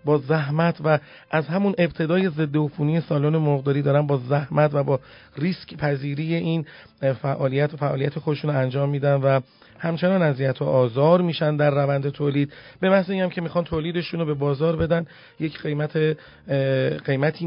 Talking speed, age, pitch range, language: 160 wpm, 40-59, 140-165 Hz, Persian